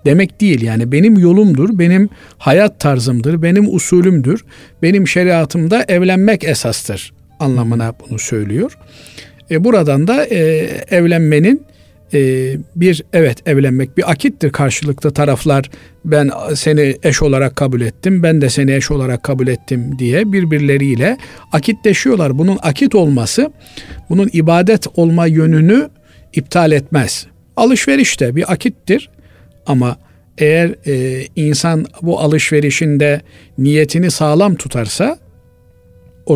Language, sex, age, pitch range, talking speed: Turkish, male, 50-69, 140-185 Hz, 115 wpm